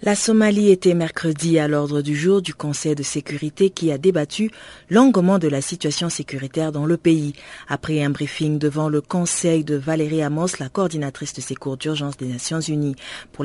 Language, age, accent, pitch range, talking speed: French, 40-59, French, 155-205 Hz, 185 wpm